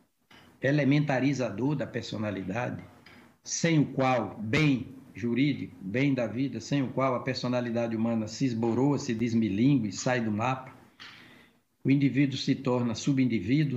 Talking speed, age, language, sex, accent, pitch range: 130 wpm, 60-79, Portuguese, male, Brazilian, 115-140 Hz